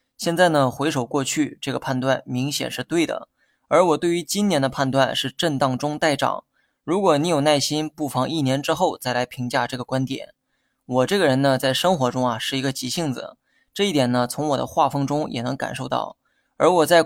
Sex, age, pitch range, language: male, 20-39, 130-160 Hz, Chinese